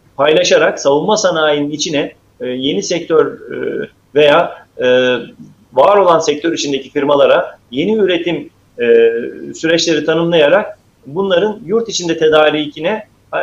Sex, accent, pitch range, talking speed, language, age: male, native, 145-200 Hz, 90 wpm, Turkish, 40-59